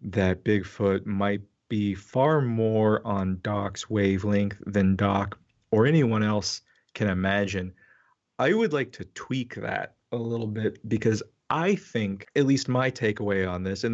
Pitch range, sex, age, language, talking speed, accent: 100-115 Hz, male, 30-49, English, 150 wpm, American